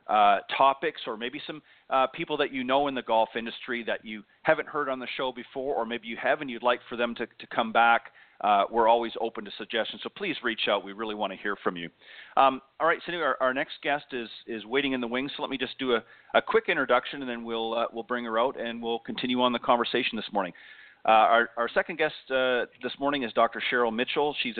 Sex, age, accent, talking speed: male, 40-59, American, 255 wpm